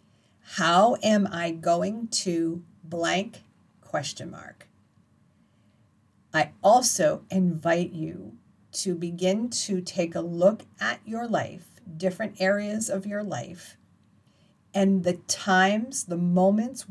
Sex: female